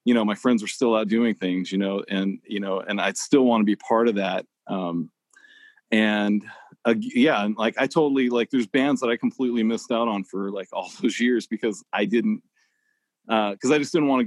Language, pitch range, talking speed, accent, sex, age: English, 105-135 Hz, 225 wpm, American, male, 40-59